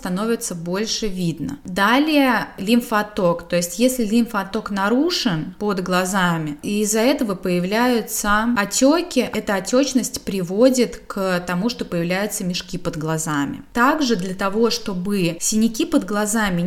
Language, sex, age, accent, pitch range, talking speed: Russian, female, 20-39, native, 190-245 Hz, 120 wpm